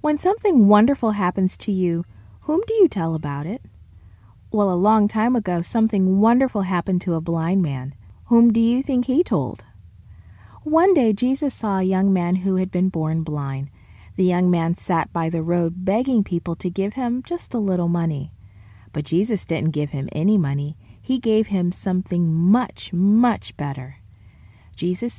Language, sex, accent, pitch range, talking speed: English, female, American, 145-225 Hz, 175 wpm